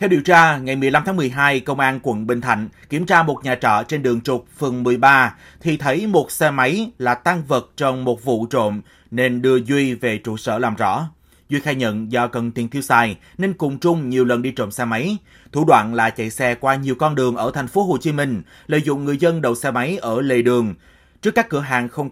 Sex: male